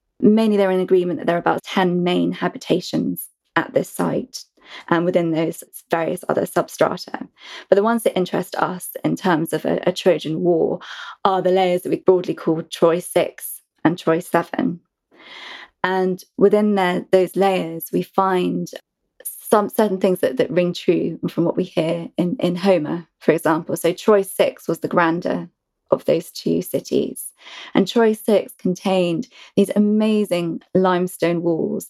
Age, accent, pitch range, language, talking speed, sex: 20-39, British, 170-195 Hz, English, 160 wpm, female